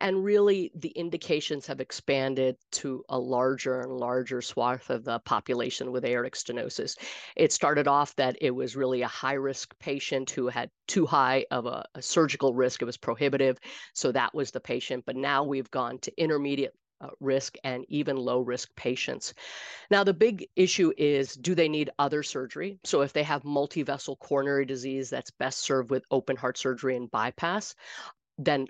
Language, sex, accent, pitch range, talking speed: English, female, American, 130-170 Hz, 180 wpm